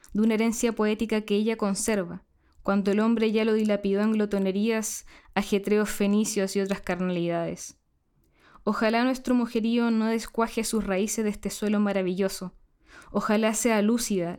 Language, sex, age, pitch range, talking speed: Spanish, female, 10-29, 195-230 Hz, 140 wpm